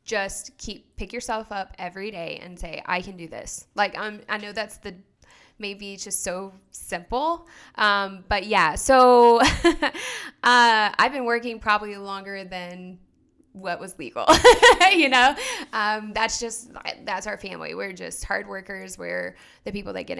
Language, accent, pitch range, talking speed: English, American, 180-210 Hz, 165 wpm